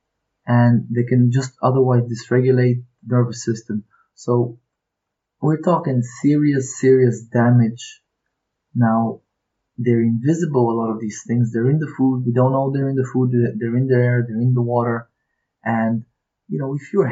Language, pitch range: English, 115-130 Hz